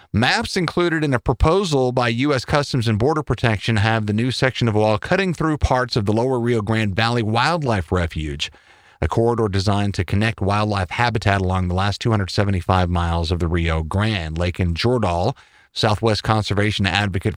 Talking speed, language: 175 wpm, English